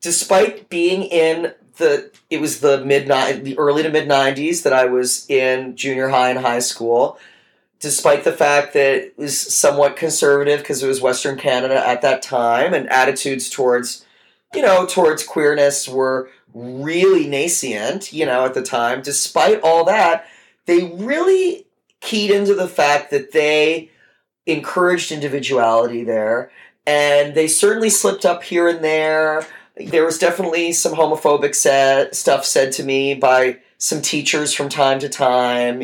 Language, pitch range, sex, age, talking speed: English, 130-160 Hz, male, 30-49, 150 wpm